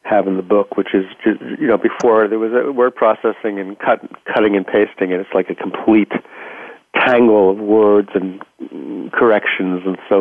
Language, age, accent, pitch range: English, 60-79, American, 95-115 Hz